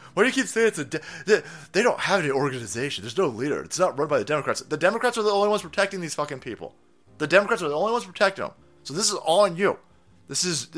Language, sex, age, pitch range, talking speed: English, male, 30-49, 125-180 Hz, 275 wpm